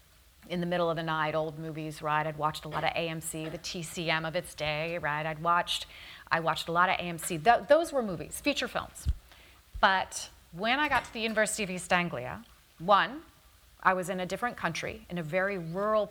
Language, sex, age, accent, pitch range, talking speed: English, female, 30-49, American, 160-220 Hz, 210 wpm